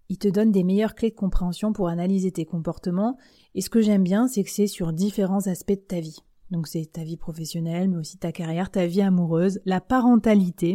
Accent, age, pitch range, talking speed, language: French, 30-49, 170-215 Hz, 225 wpm, French